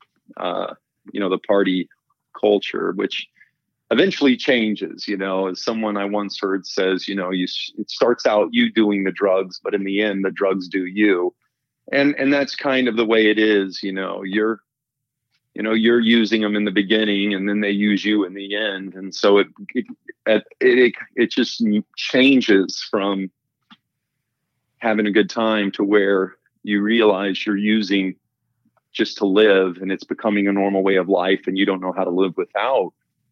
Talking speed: 180 wpm